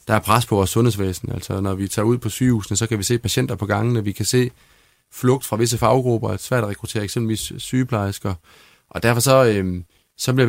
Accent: native